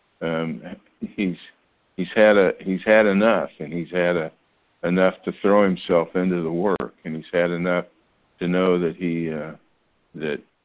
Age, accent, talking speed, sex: 60-79, American, 165 wpm, male